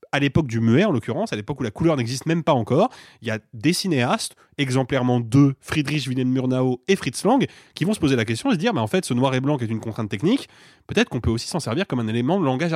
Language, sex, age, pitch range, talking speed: French, male, 20-39, 120-165 Hz, 285 wpm